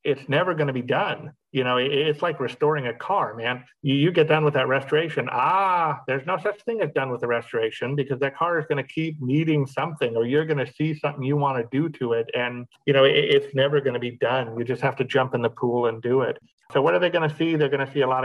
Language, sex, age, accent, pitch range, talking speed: English, male, 50-69, American, 120-145 Hz, 275 wpm